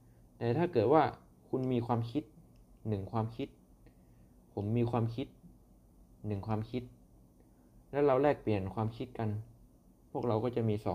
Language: Thai